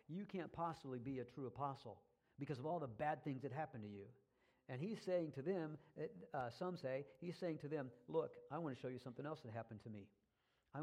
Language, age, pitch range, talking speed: English, 50-69, 125-155 Hz, 235 wpm